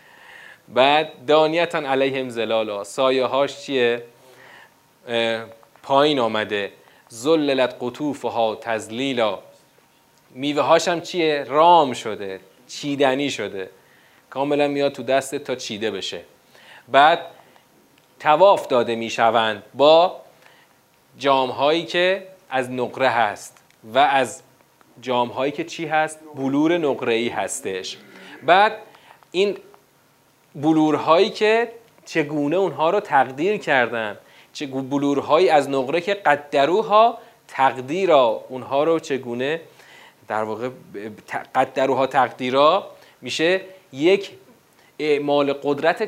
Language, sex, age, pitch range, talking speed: Persian, male, 30-49, 125-165 Hz, 100 wpm